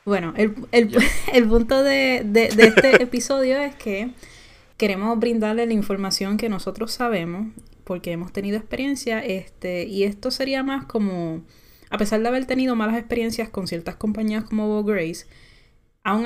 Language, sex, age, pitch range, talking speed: Spanish, female, 10-29, 185-230 Hz, 160 wpm